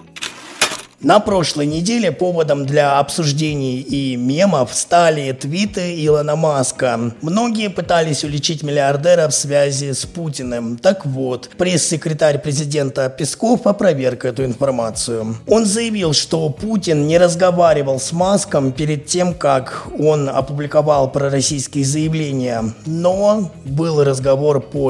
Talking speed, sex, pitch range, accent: 115 wpm, male, 135-170 Hz, native